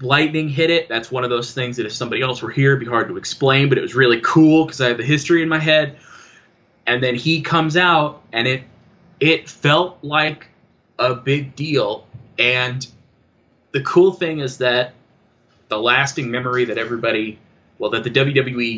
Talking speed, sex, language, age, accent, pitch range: 190 wpm, male, English, 20-39, American, 120-155 Hz